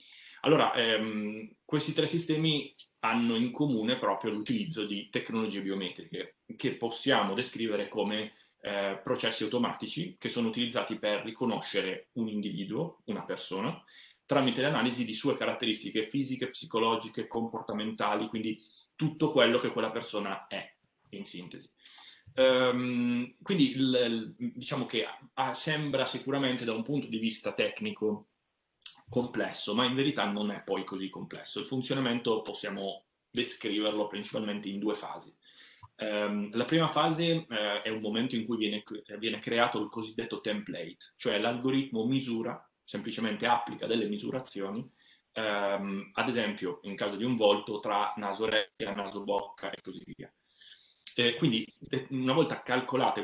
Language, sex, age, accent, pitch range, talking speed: Italian, male, 30-49, native, 105-130 Hz, 135 wpm